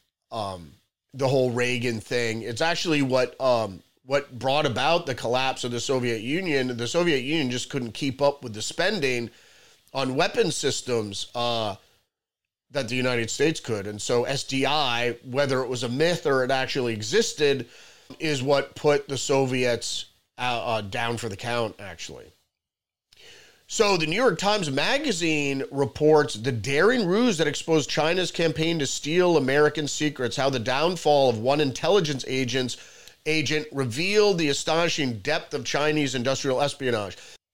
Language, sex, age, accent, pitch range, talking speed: English, male, 30-49, American, 125-160 Hz, 150 wpm